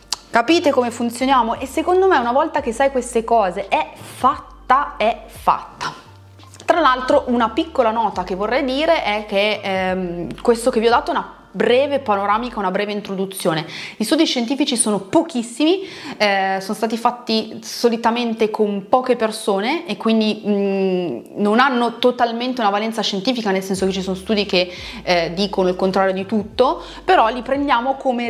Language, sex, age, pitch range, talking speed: Italian, female, 20-39, 195-250 Hz, 165 wpm